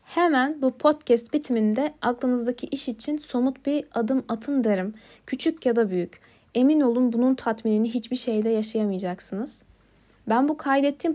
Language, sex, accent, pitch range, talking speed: Turkish, female, native, 220-260 Hz, 140 wpm